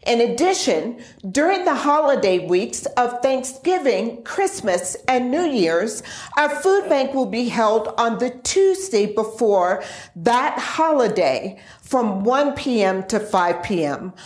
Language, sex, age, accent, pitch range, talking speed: English, female, 50-69, American, 195-275 Hz, 125 wpm